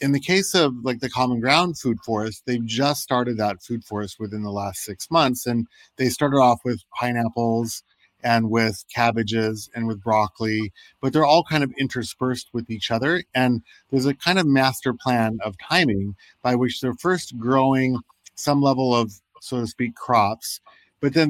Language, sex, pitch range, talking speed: English, male, 115-130 Hz, 185 wpm